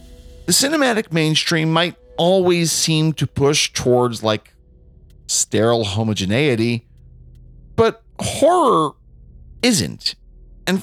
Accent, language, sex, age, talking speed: American, English, male, 40-59, 90 wpm